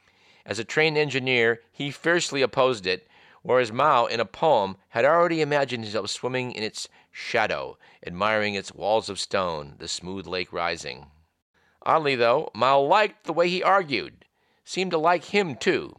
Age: 50-69